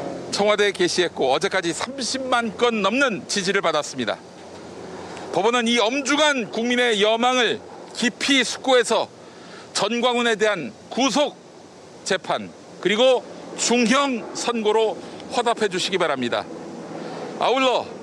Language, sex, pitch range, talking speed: English, male, 200-250 Hz, 85 wpm